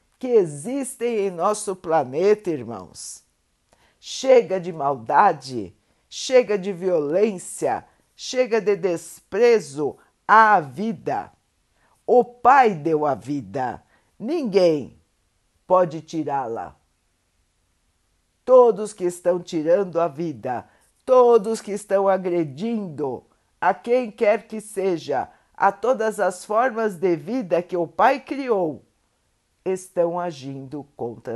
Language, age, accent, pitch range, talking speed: Portuguese, 50-69, Brazilian, 150-215 Hz, 100 wpm